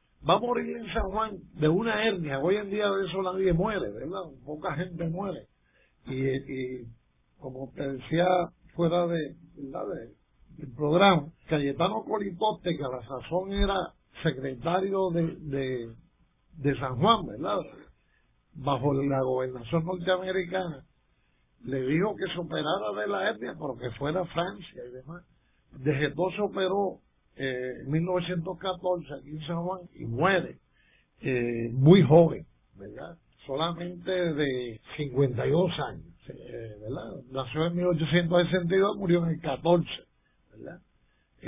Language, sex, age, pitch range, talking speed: Spanish, male, 60-79, 135-185 Hz, 135 wpm